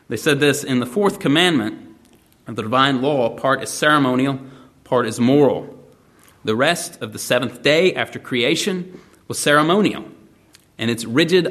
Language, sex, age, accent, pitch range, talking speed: English, male, 30-49, American, 115-150 Hz, 155 wpm